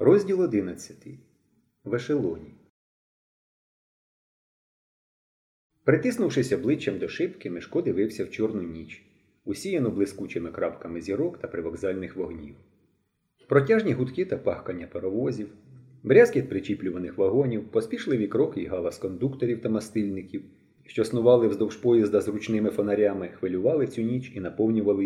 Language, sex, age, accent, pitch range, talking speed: Ukrainian, male, 30-49, native, 105-140 Hz, 115 wpm